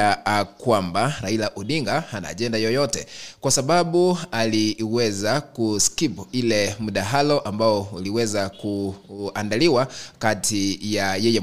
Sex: male